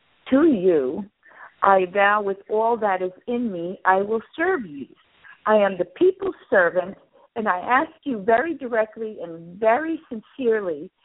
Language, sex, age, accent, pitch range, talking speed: English, female, 50-69, American, 190-240 Hz, 150 wpm